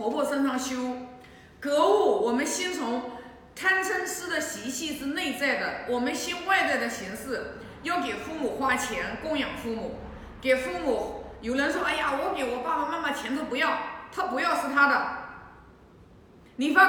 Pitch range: 255-345 Hz